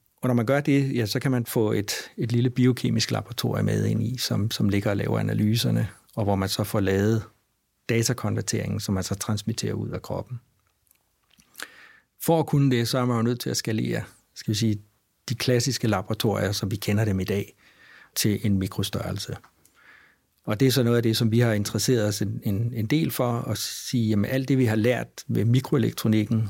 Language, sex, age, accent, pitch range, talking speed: Danish, male, 60-79, native, 100-120 Hz, 210 wpm